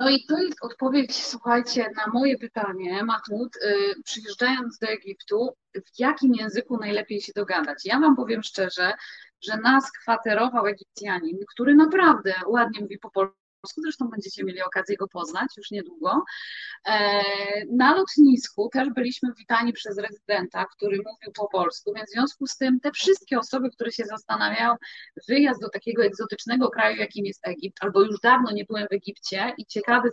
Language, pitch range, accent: Polish, 200-245 Hz, native